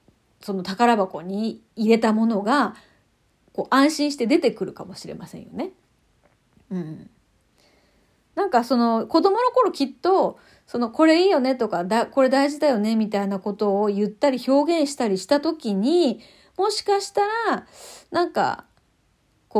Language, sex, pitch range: Japanese, female, 205-315 Hz